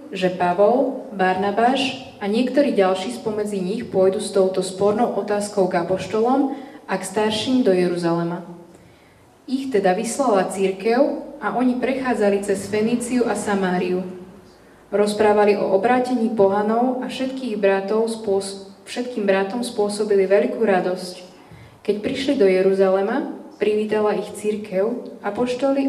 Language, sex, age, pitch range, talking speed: Slovak, female, 20-39, 195-240 Hz, 115 wpm